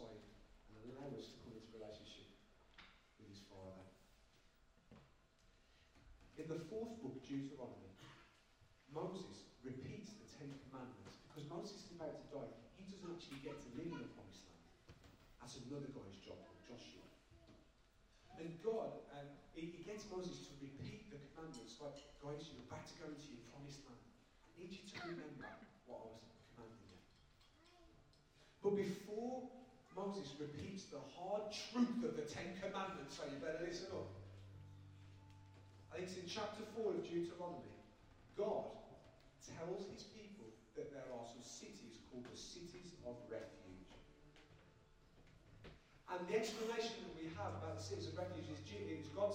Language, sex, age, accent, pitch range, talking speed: English, male, 40-59, British, 110-185 Hz, 150 wpm